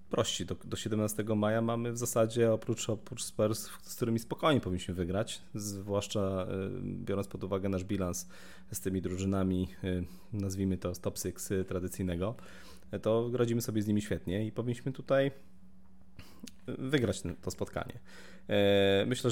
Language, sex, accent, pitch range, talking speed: Polish, male, native, 95-115 Hz, 130 wpm